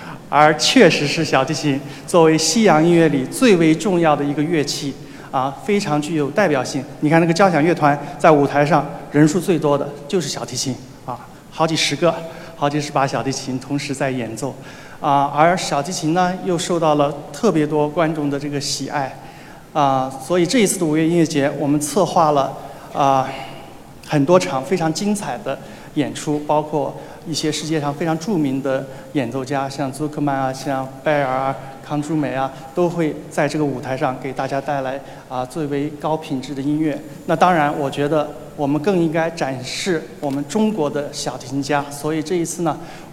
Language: Chinese